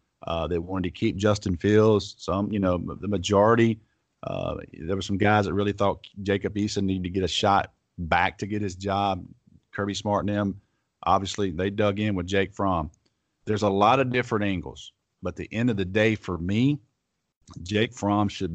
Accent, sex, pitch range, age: American, male, 90-105 Hz, 40-59